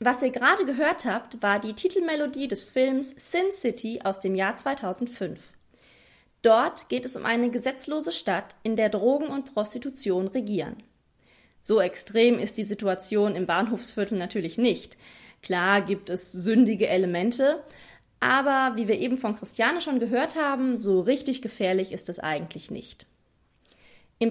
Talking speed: 150 wpm